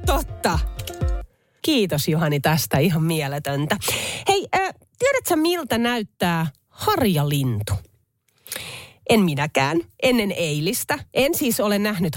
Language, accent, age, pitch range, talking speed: Finnish, native, 30-49, 140-225 Hz, 100 wpm